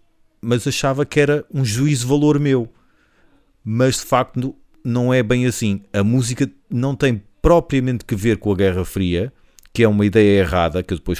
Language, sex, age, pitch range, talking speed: Portuguese, male, 40-59, 100-125 Hz, 190 wpm